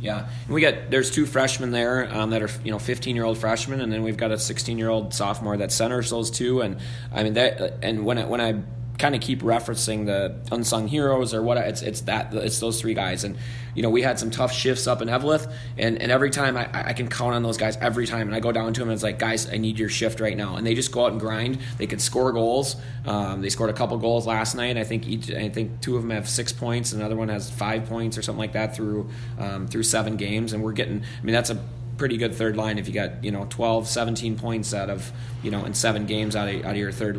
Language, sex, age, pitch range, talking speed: English, male, 20-39, 110-120 Hz, 275 wpm